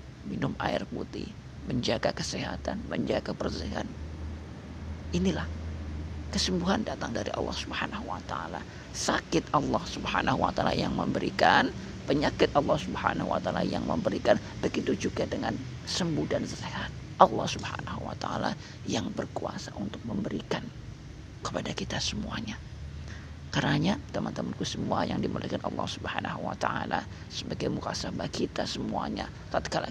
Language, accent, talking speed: Indonesian, native, 120 wpm